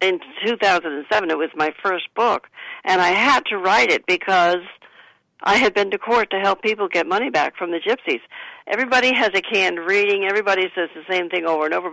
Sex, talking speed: female, 205 wpm